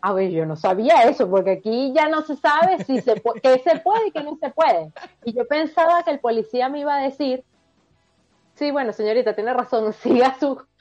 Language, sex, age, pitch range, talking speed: Spanish, female, 30-49, 205-290 Hz, 220 wpm